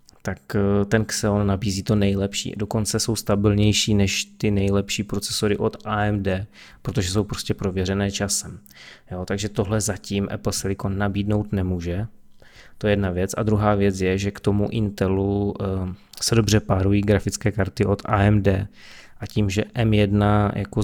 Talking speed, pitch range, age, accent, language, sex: 155 wpm, 100-105 Hz, 20-39, native, Czech, male